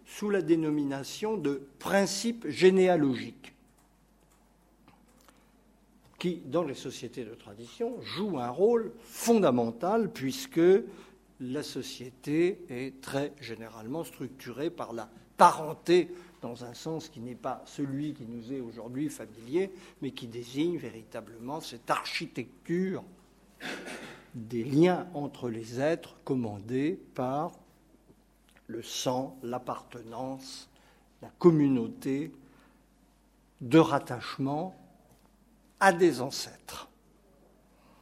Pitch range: 125-180 Hz